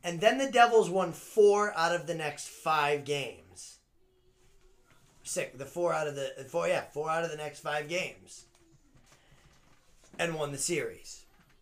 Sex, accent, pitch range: male, American, 145-205 Hz